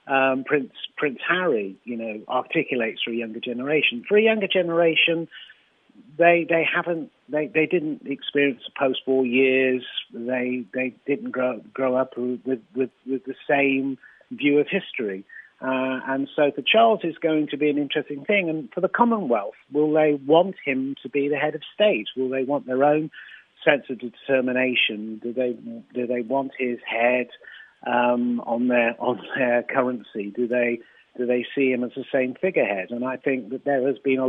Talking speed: 180 wpm